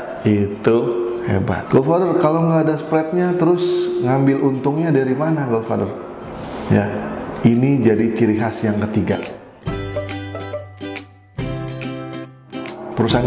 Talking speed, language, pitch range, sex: 95 wpm, Indonesian, 105-130 Hz, male